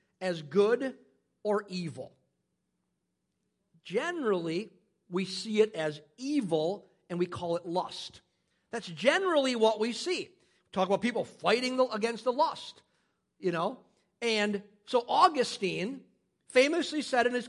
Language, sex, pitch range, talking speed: English, male, 205-265 Hz, 125 wpm